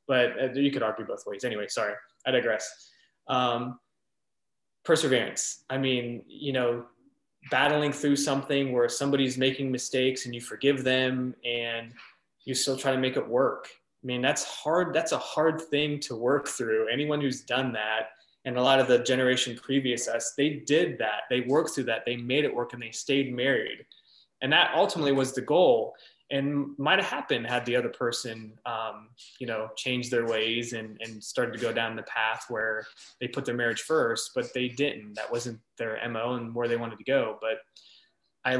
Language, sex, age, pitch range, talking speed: English, male, 20-39, 115-135 Hz, 190 wpm